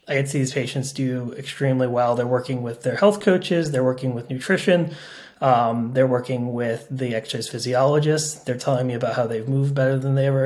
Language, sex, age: English, male, 20-39